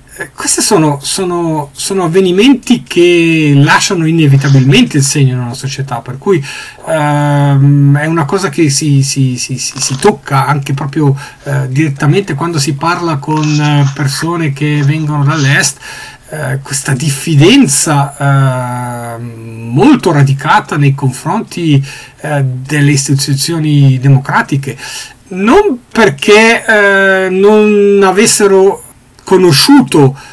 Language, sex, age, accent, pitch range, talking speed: Italian, male, 40-59, native, 135-165 Hz, 110 wpm